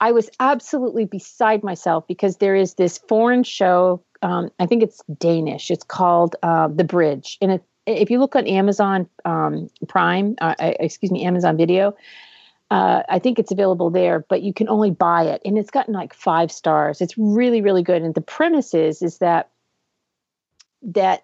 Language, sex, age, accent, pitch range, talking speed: English, female, 50-69, American, 175-245 Hz, 180 wpm